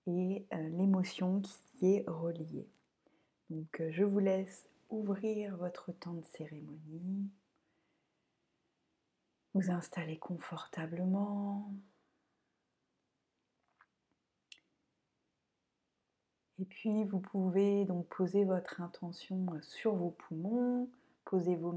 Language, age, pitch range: French, 30-49, 170-200 Hz